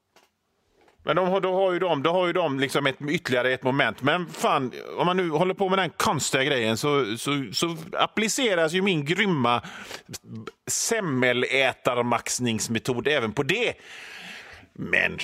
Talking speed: 155 wpm